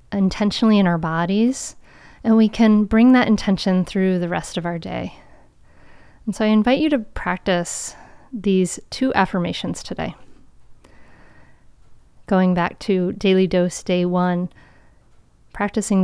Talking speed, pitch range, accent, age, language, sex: 130 wpm, 180-215 Hz, American, 30-49, English, female